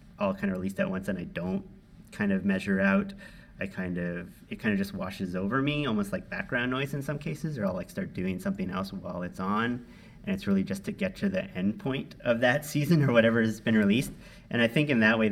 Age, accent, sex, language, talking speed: 30-49, American, male, English, 250 wpm